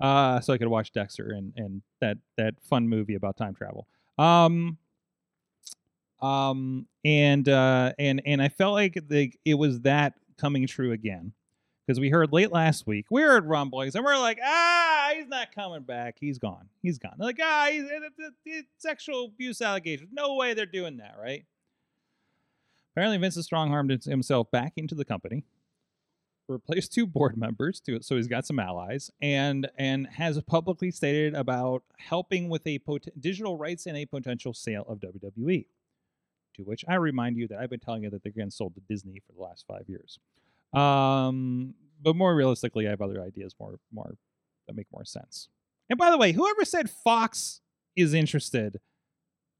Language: English